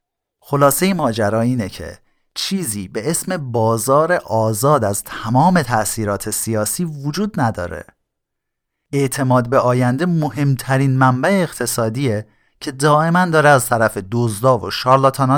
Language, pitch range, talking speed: Persian, 105-140 Hz, 115 wpm